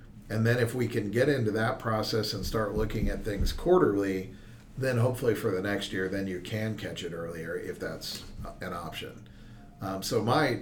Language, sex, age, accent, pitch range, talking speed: English, male, 50-69, American, 100-115 Hz, 190 wpm